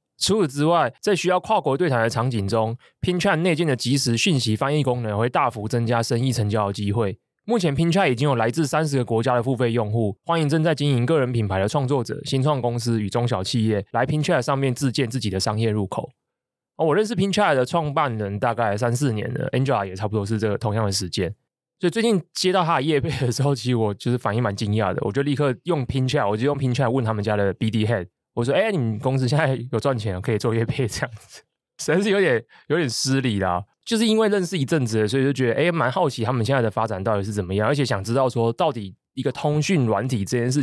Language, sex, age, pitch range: Chinese, male, 20-39, 110-150 Hz